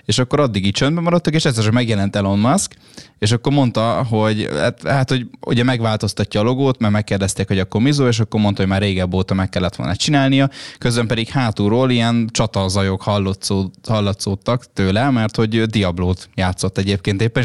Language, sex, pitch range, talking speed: Hungarian, male, 100-125 Hz, 170 wpm